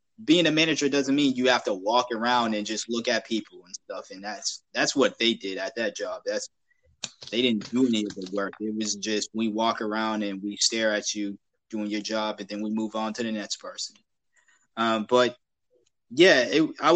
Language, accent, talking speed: English, American, 215 wpm